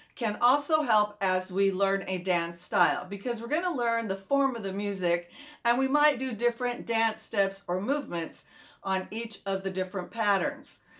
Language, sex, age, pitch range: English, female, 40-59, 190-245 Hz